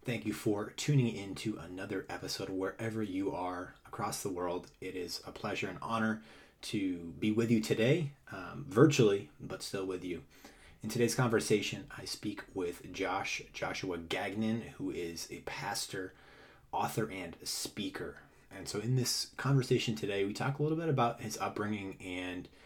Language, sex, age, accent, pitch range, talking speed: English, male, 30-49, American, 90-115 Hz, 165 wpm